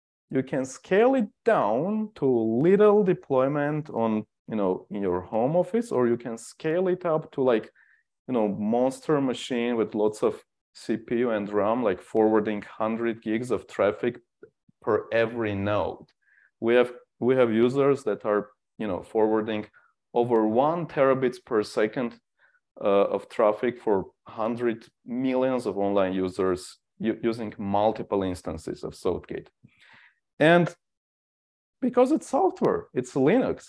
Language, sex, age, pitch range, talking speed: English, male, 30-49, 110-145 Hz, 135 wpm